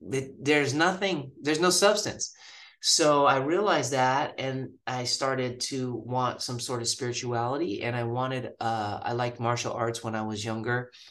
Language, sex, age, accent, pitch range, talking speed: English, male, 30-49, American, 110-135 Hz, 165 wpm